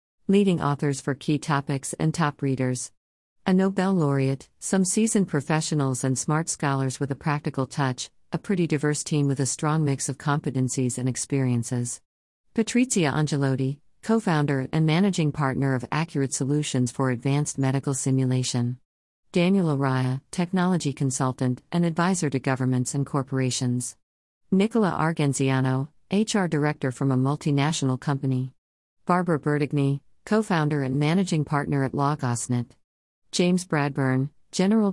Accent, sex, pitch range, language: American, female, 130-165 Hz, English